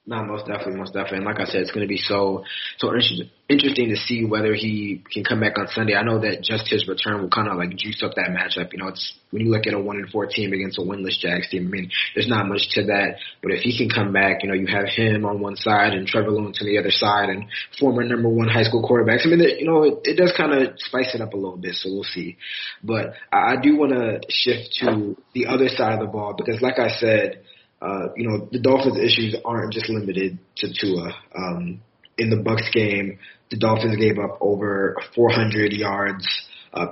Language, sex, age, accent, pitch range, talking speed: English, male, 20-39, American, 100-115 Hz, 240 wpm